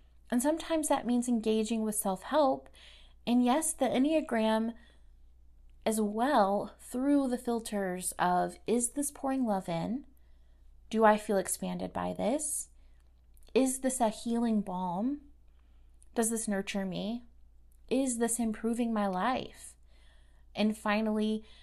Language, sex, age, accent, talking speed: English, female, 30-49, American, 120 wpm